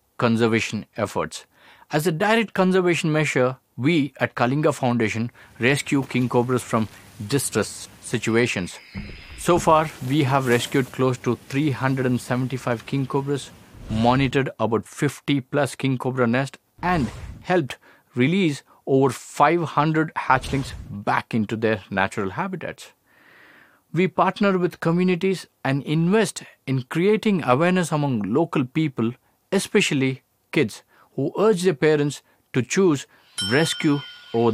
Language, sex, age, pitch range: Korean, male, 50-69, 120-160 Hz